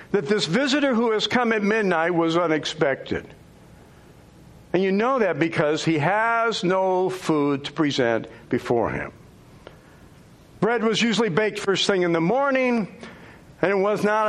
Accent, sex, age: American, male, 60-79